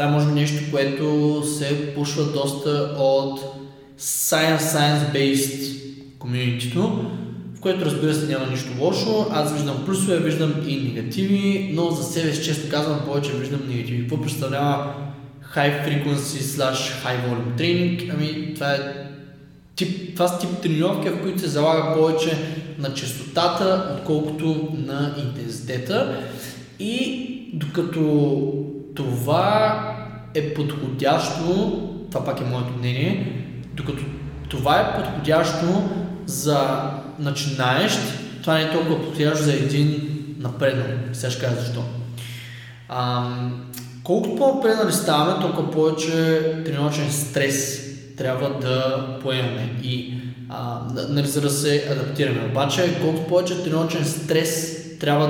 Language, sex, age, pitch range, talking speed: Bulgarian, male, 20-39, 135-160 Hz, 115 wpm